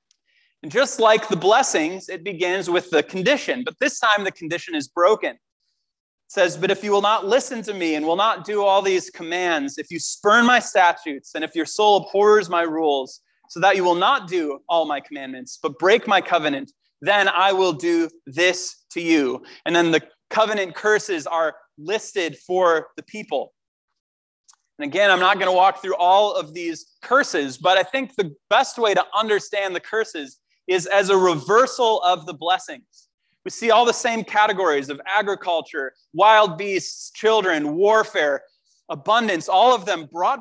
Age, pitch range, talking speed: 30-49, 170-220 Hz, 180 wpm